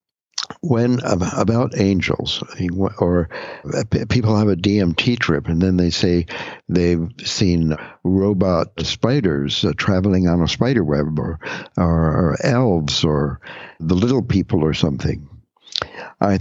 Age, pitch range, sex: 60-79, 85-105 Hz, male